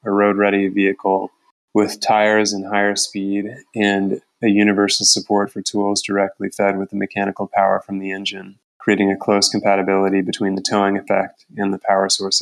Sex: male